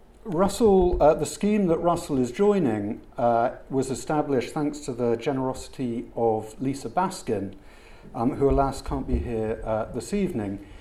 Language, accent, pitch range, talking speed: English, British, 105-140 Hz, 150 wpm